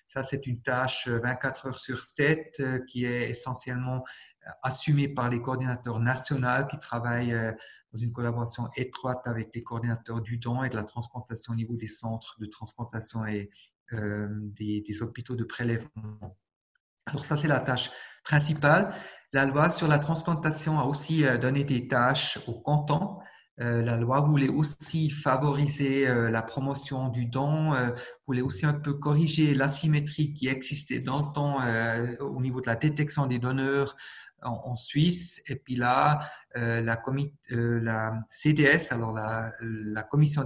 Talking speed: 160 wpm